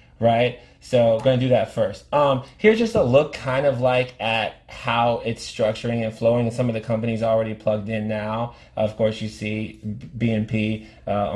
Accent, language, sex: American, English, male